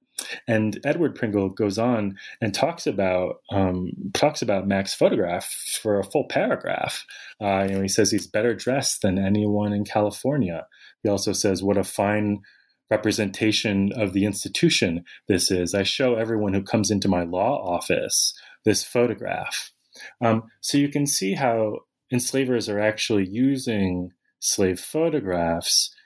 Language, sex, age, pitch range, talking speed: English, male, 30-49, 95-110 Hz, 145 wpm